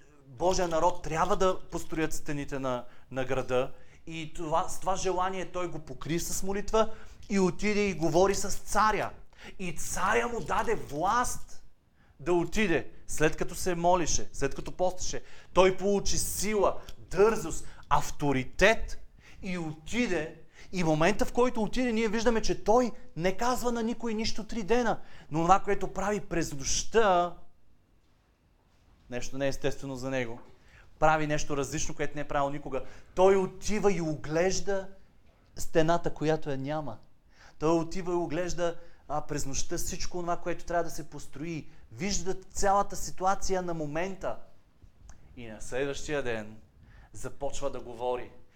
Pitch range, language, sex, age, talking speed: 130-185 Hz, Bulgarian, male, 40-59, 145 wpm